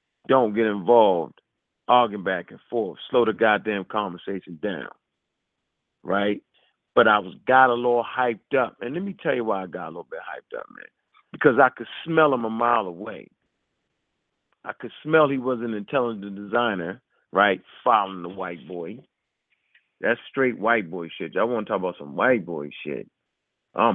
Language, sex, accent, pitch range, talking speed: English, male, American, 95-130 Hz, 180 wpm